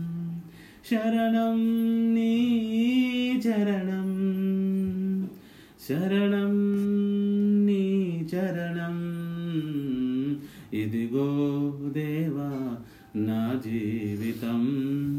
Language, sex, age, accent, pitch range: Telugu, male, 30-49, native, 155-200 Hz